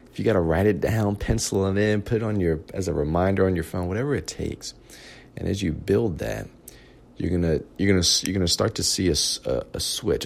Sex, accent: male, American